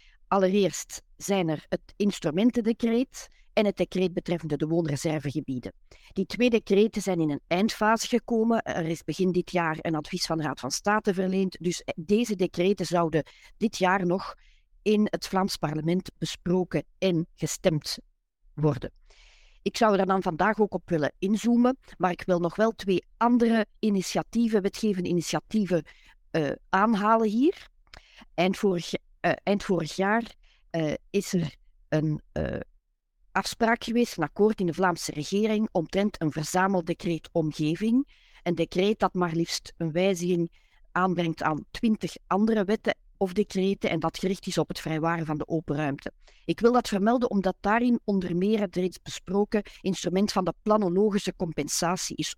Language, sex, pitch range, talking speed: Dutch, female, 165-210 Hz, 155 wpm